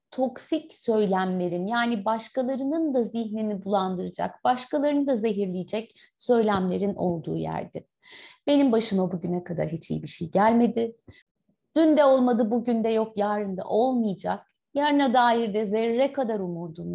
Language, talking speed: Turkish, 130 wpm